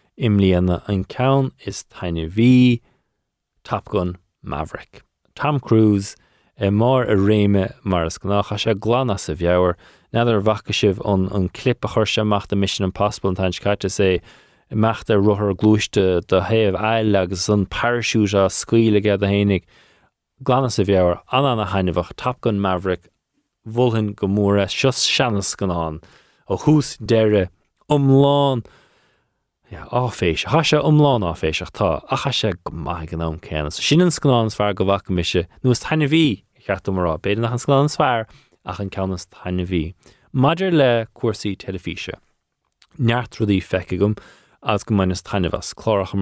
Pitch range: 95-120 Hz